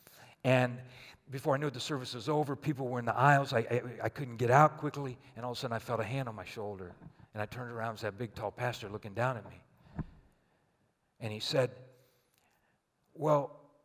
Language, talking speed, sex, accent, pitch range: English, 220 wpm, male, American, 120-145 Hz